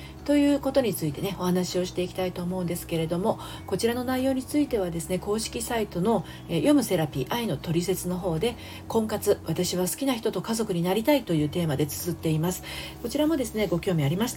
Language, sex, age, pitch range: Japanese, female, 40-59, 165-225 Hz